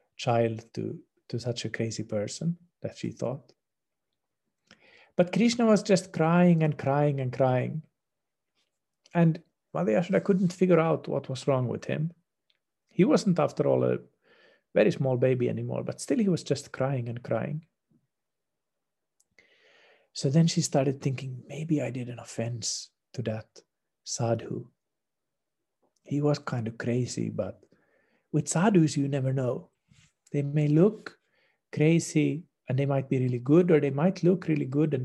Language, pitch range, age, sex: English, 125-170 Hz, 50-69, male